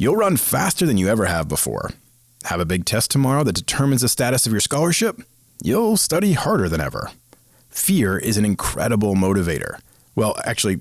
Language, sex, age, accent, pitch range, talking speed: English, male, 40-59, American, 105-140 Hz, 180 wpm